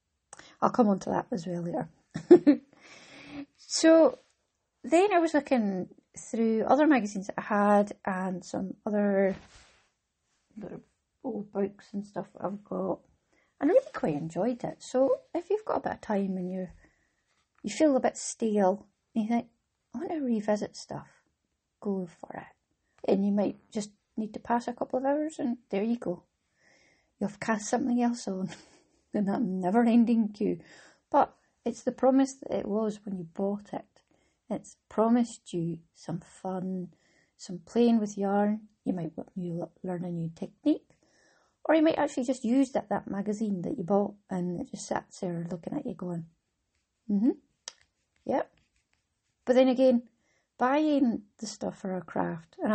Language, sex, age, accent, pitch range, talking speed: English, female, 30-49, British, 190-255 Hz, 165 wpm